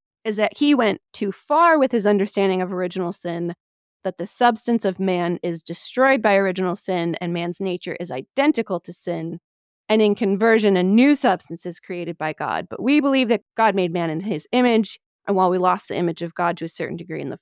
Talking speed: 215 wpm